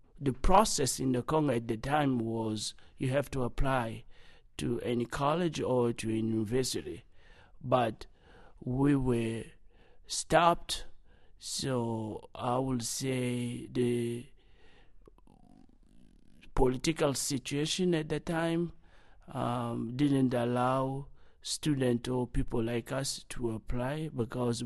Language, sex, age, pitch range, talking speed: English, male, 60-79, 115-130 Hz, 110 wpm